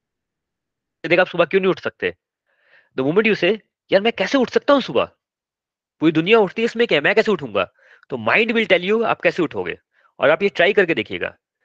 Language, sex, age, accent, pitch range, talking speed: Hindi, male, 30-49, native, 135-180 Hz, 185 wpm